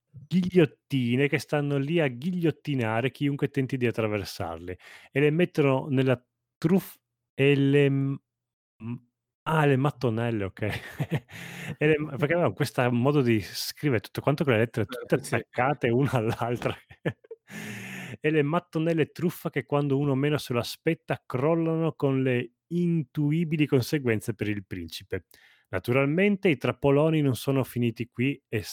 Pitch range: 110-155 Hz